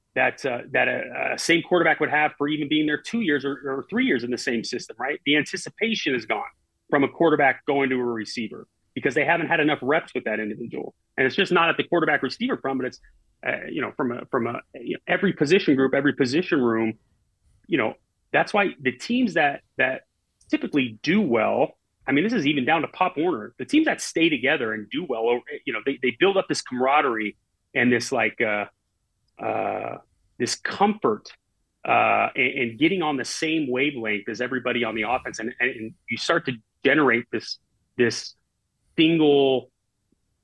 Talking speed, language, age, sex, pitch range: 200 wpm, English, 30-49, male, 115-155 Hz